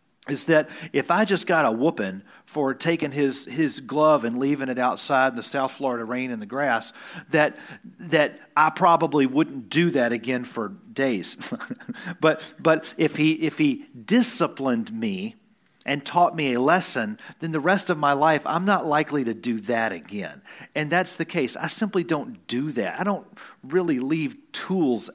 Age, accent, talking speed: 40-59, American, 180 wpm